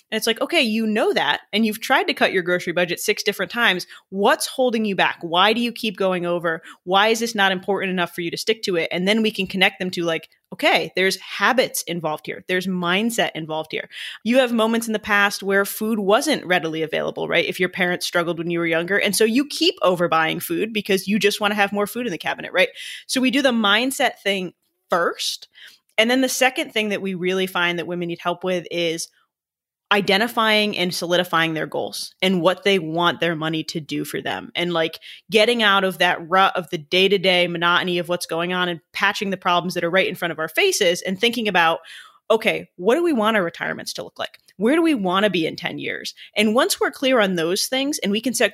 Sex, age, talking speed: female, 20-39, 235 wpm